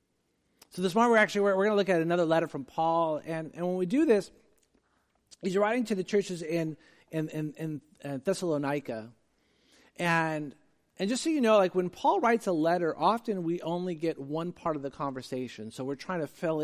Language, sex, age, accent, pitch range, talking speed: English, male, 40-59, American, 140-190 Hz, 205 wpm